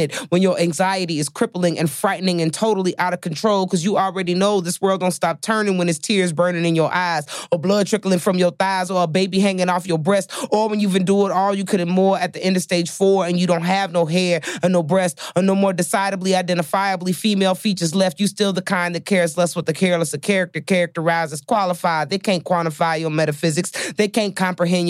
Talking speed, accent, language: 230 wpm, American, English